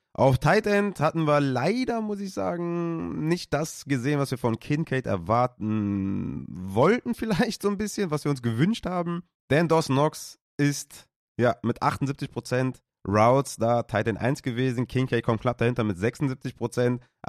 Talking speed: 160 wpm